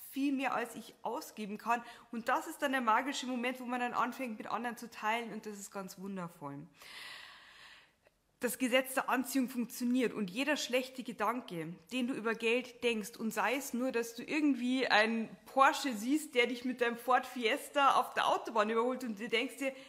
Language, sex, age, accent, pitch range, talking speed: German, female, 20-39, German, 230-265 Hz, 195 wpm